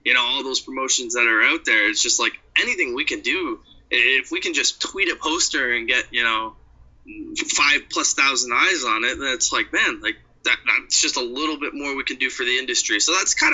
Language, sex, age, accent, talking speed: English, male, 20-39, American, 235 wpm